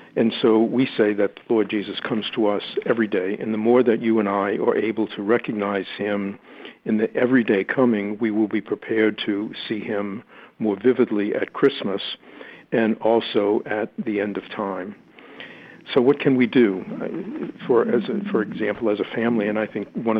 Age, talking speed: 50-69, 185 wpm